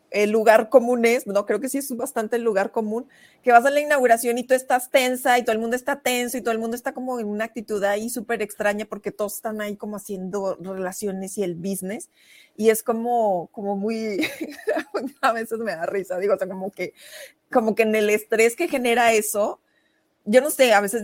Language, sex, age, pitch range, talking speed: Spanish, female, 30-49, 200-235 Hz, 220 wpm